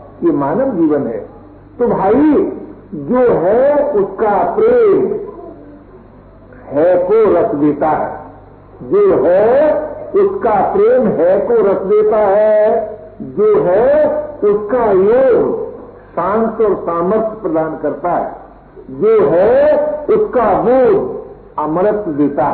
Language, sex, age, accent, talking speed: Hindi, male, 50-69, native, 105 wpm